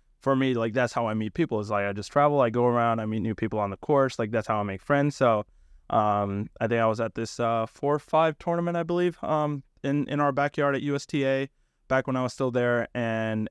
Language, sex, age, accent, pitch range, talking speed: English, male, 20-39, American, 115-145 Hz, 260 wpm